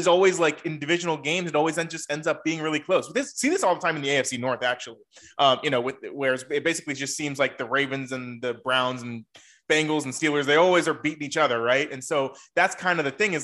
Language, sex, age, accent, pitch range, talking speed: English, male, 20-39, American, 135-175 Hz, 270 wpm